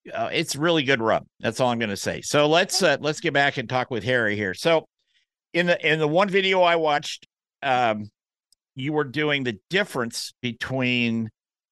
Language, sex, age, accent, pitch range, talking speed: English, male, 50-69, American, 115-145 Hz, 195 wpm